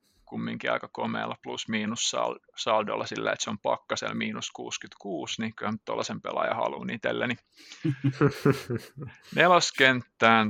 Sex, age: male, 30-49